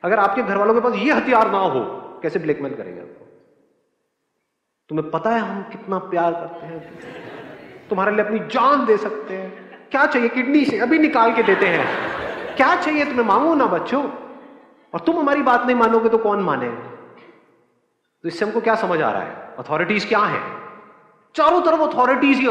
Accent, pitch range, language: native, 195-245 Hz, Hindi